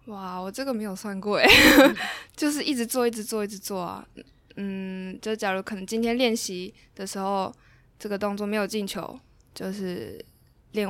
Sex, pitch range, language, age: female, 180-215 Hz, Chinese, 10-29